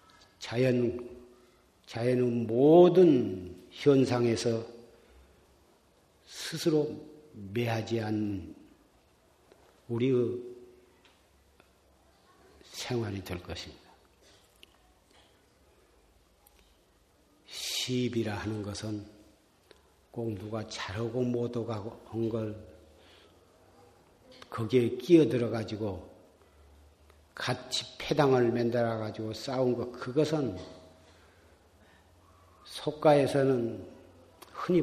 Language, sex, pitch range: Korean, male, 105-140 Hz